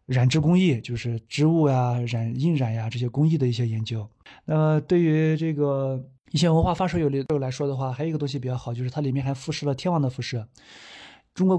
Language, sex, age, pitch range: Chinese, male, 20-39, 125-155 Hz